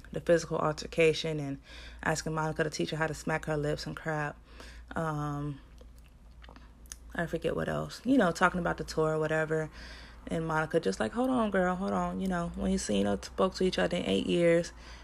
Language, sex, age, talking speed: English, female, 20-39, 210 wpm